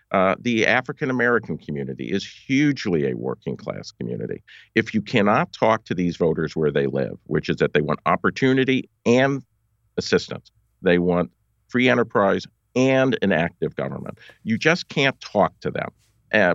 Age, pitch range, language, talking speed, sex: 50-69, 90-120 Hz, English, 155 wpm, male